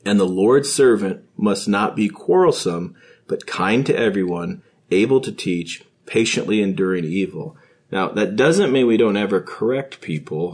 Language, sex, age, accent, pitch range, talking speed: English, male, 40-59, American, 95-115 Hz, 155 wpm